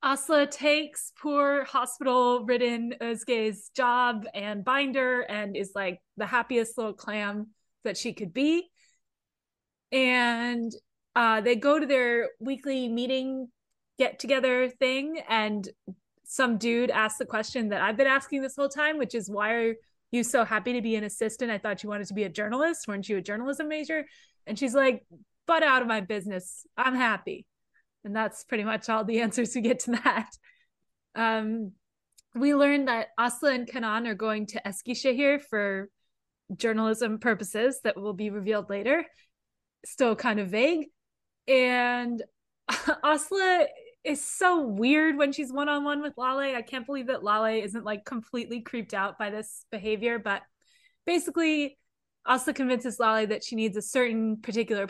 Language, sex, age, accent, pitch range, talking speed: English, female, 20-39, American, 215-275 Hz, 155 wpm